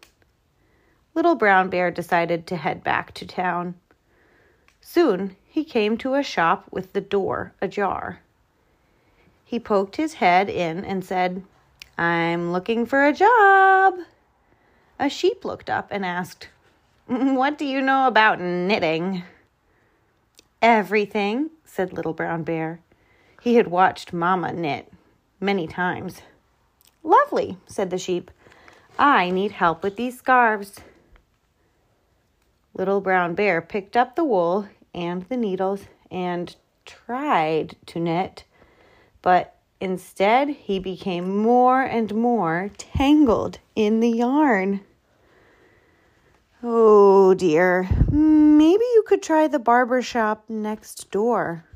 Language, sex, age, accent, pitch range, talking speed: English, female, 30-49, American, 180-255 Hz, 115 wpm